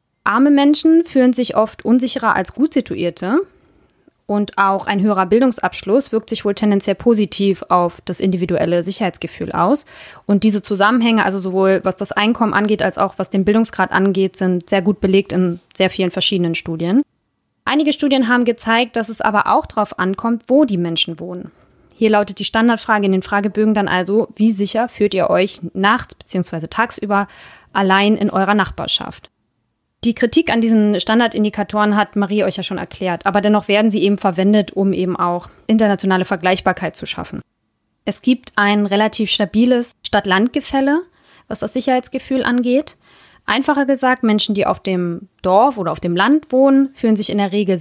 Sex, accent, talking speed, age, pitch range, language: female, German, 170 wpm, 20-39, 190-230 Hz, German